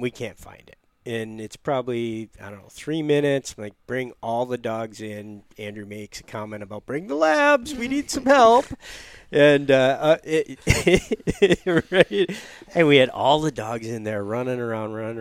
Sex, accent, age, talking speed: male, American, 40-59, 170 wpm